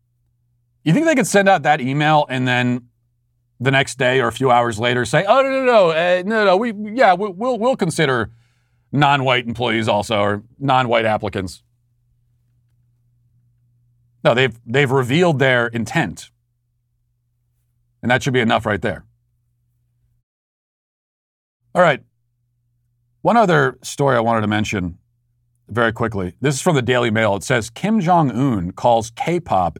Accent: American